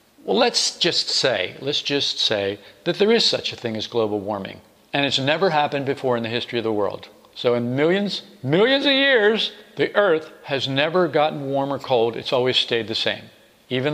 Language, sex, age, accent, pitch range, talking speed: English, male, 50-69, American, 120-160 Hz, 200 wpm